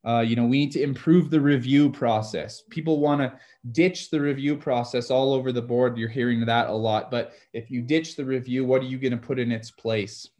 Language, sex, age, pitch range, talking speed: English, male, 20-39, 120-140 Hz, 235 wpm